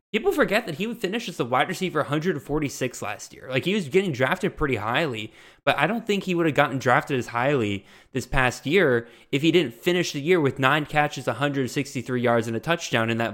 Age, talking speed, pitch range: 20-39, 225 wpm, 120-160 Hz